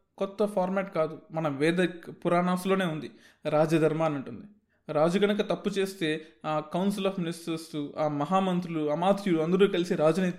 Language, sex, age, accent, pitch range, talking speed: Telugu, male, 20-39, native, 150-200 Hz, 140 wpm